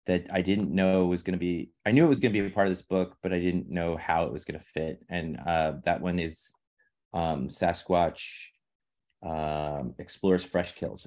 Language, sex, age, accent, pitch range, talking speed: English, male, 30-49, American, 80-95 Hz, 220 wpm